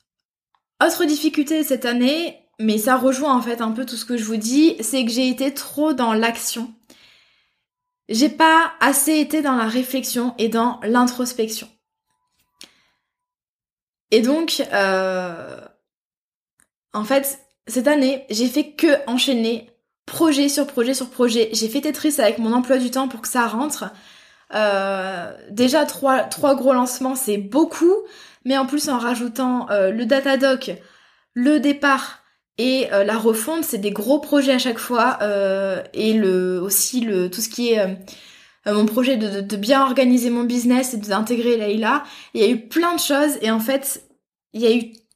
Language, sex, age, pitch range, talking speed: French, female, 20-39, 225-285 Hz, 170 wpm